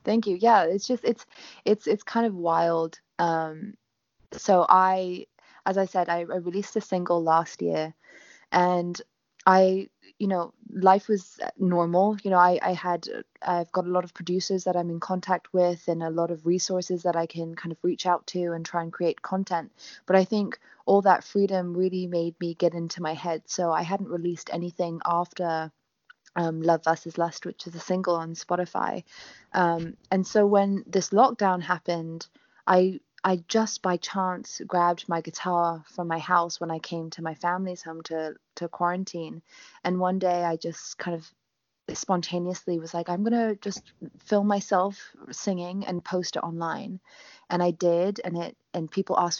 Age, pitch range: 20-39, 170-190 Hz